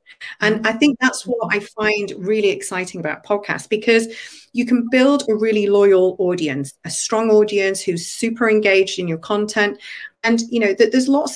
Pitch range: 185-235 Hz